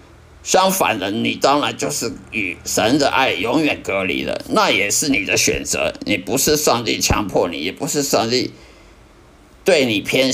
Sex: male